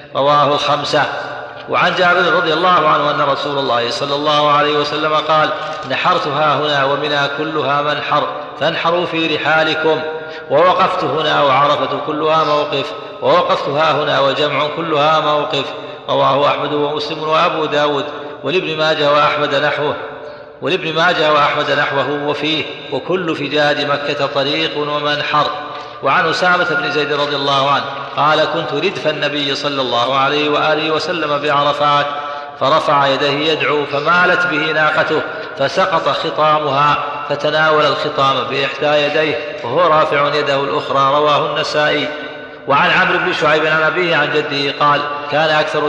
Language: Arabic